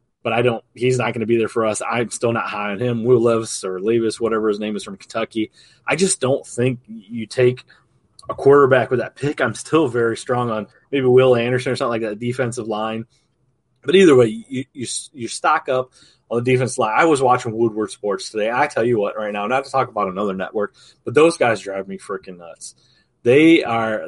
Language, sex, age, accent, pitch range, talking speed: English, male, 30-49, American, 110-130 Hz, 230 wpm